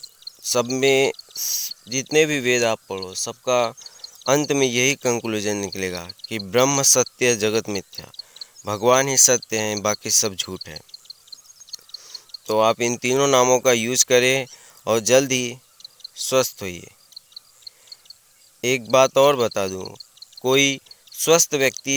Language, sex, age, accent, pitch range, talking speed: Hindi, male, 20-39, native, 110-130 Hz, 125 wpm